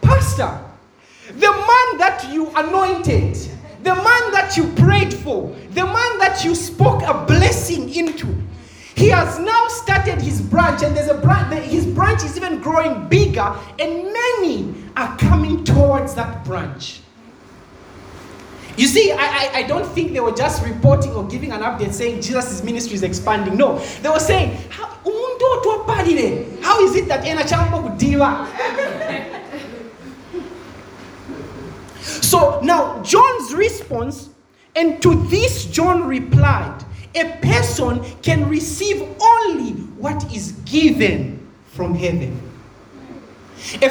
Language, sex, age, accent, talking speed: English, male, 30-49, South African, 125 wpm